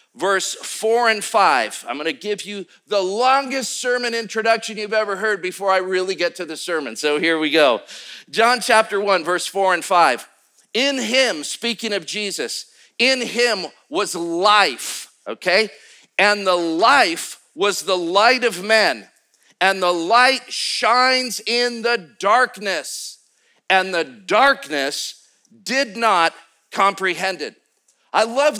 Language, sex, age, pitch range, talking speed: English, male, 50-69, 195-245 Hz, 140 wpm